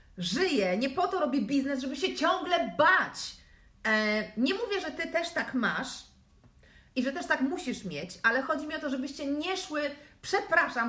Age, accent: 30-49, native